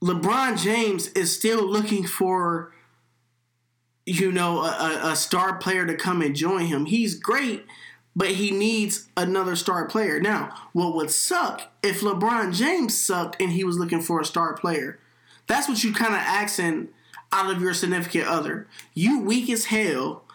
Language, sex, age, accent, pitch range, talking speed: English, male, 20-39, American, 165-200 Hz, 165 wpm